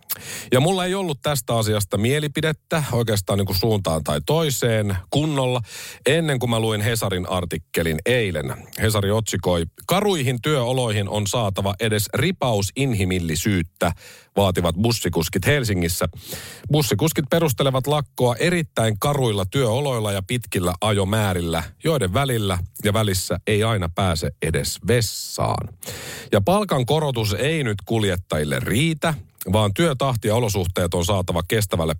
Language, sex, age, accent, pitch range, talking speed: Finnish, male, 40-59, native, 100-135 Hz, 120 wpm